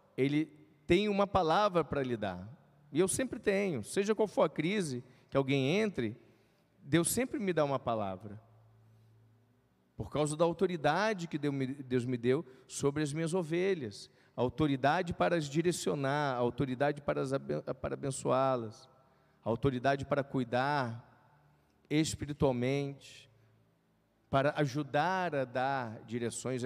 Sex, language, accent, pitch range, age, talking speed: male, Portuguese, Brazilian, 125-175 Hz, 40-59, 120 wpm